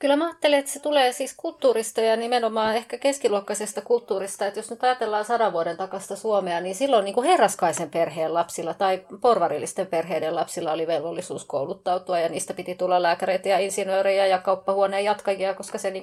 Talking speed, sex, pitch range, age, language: 170 wpm, female, 185-235 Hz, 30-49, Finnish